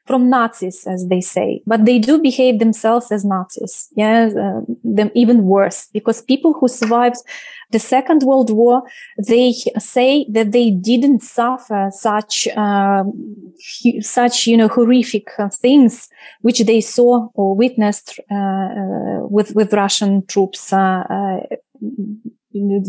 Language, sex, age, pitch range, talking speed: English, female, 20-39, 205-245 Hz, 135 wpm